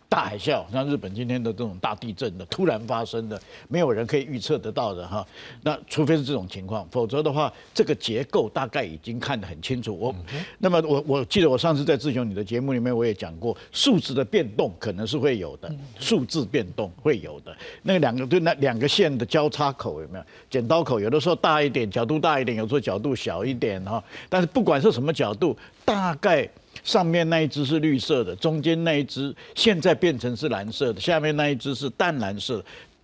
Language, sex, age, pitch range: Chinese, male, 50-69, 115-155 Hz